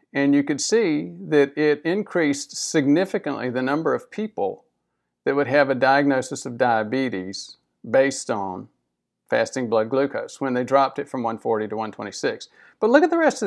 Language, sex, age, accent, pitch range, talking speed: English, male, 50-69, American, 130-185 Hz, 170 wpm